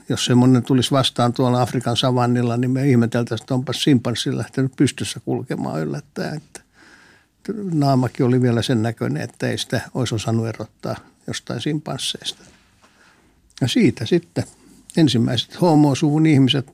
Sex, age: male, 60-79